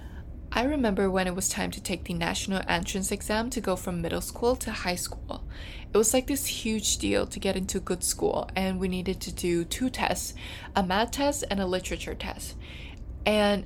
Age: 20-39